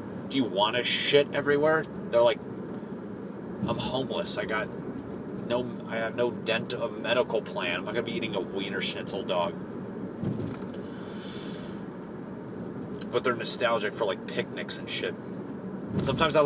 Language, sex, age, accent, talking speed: English, male, 30-49, American, 140 wpm